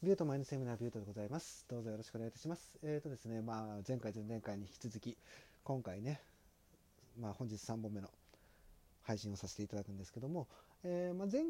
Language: Japanese